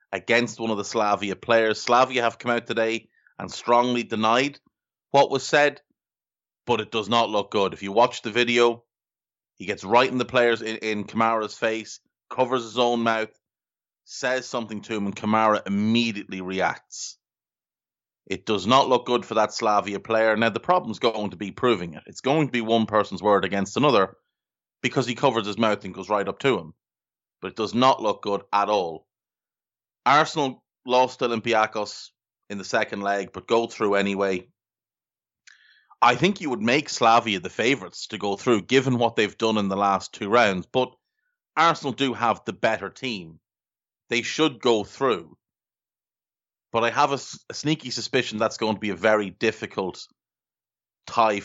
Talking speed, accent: 180 wpm, Irish